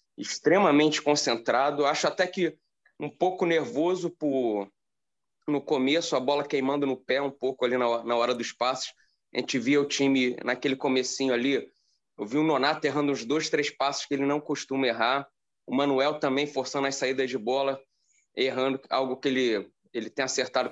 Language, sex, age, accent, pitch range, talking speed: Portuguese, male, 20-39, Brazilian, 130-150 Hz, 175 wpm